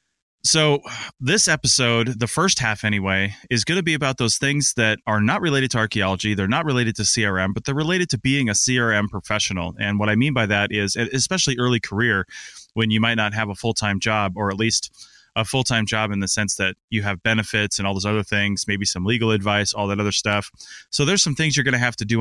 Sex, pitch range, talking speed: male, 105-130 Hz, 235 wpm